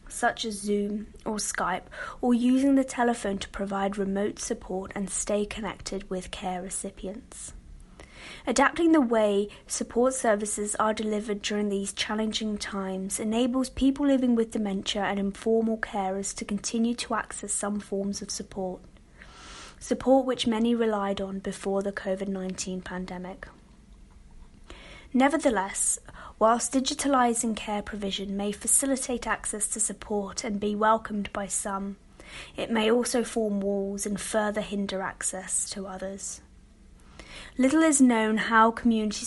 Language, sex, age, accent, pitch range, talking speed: English, female, 30-49, British, 195-235 Hz, 130 wpm